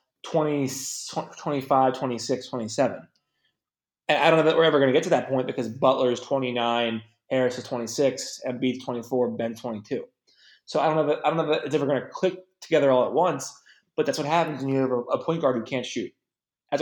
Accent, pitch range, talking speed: American, 125-155 Hz, 210 wpm